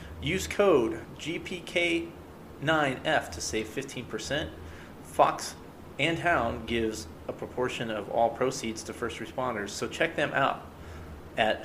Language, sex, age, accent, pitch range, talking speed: English, male, 30-49, American, 100-120 Hz, 120 wpm